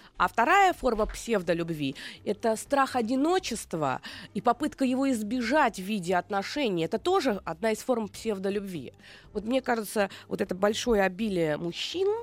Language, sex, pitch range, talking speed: Russian, female, 190-245 Hz, 140 wpm